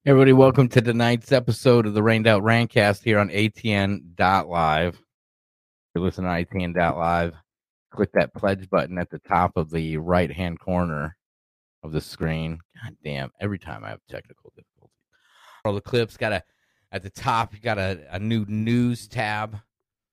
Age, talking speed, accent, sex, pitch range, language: 30-49, 165 wpm, American, male, 90-115 Hz, English